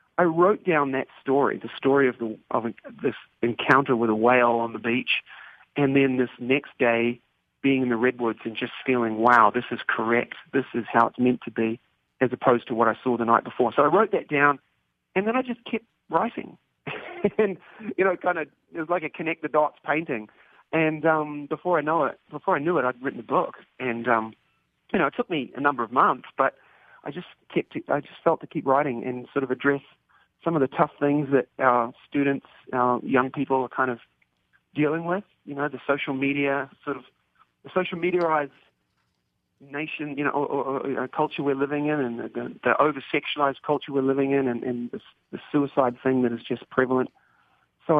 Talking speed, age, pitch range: 210 wpm, 40-59, 125-145 Hz